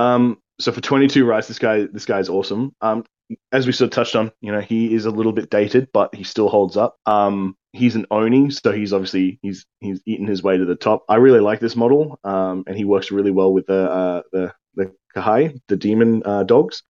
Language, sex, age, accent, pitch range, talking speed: English, male, 20-39, Australian, 95-115 Hz, 235 wpm